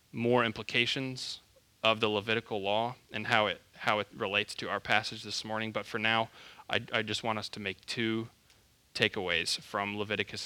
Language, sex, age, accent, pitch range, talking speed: English, male, 20-39, American, 105-120 Hz, 180 wpm